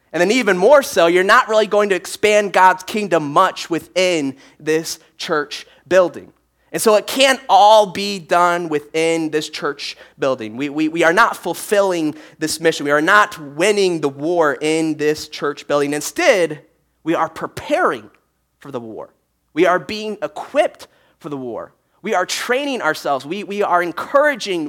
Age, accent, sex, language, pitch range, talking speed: 30-49, American, male, English, 155-210 Hz, 170 wpm